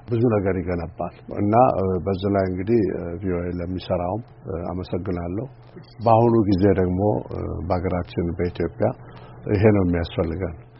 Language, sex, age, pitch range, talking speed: Amharic, male, 60-79, 90-115 Hz, 95 wpm